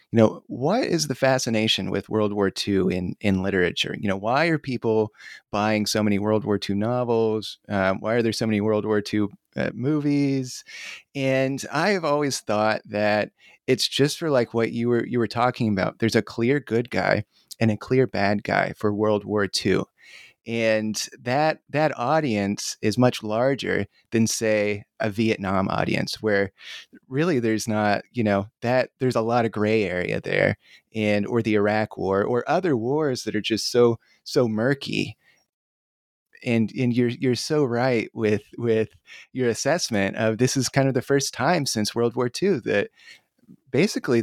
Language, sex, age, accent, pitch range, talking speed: English, male, 30-49, American, 105-125 Hz, 180 wpm